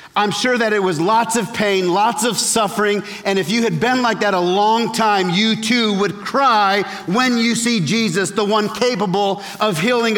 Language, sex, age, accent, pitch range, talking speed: English, male, 40-59, American, 165-250 Hz, 200 wpm